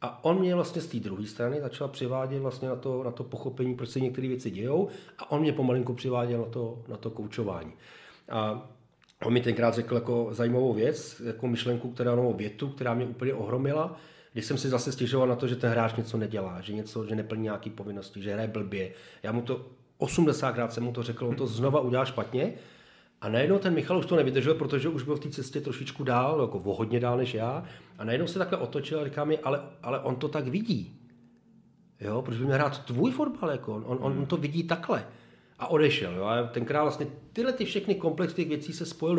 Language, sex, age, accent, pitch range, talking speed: Czech, male, 40-59, native, 120-150 Hz, 215 wpm